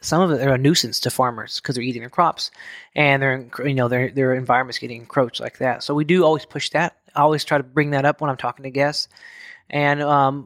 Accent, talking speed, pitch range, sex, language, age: American, 250 wpm, 130-150 Hz, male, English, 20-39